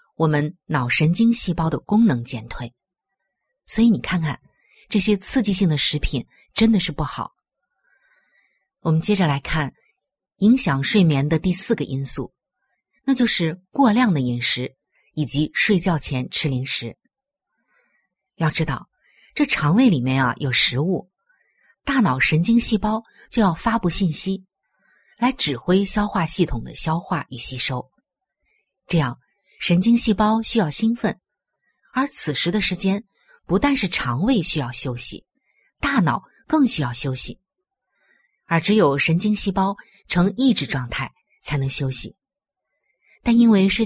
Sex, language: female, Chinese